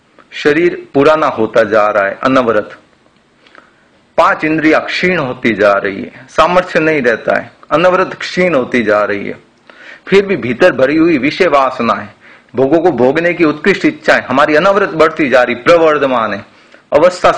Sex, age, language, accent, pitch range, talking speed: male, 40-59, Hindi, native, 150-195 Hz, 155 wpm